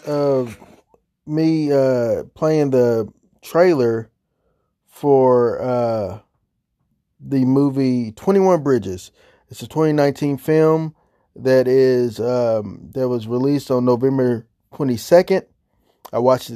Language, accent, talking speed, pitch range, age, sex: English, American, 100 wpm, 125-150 Hz, 20-39, male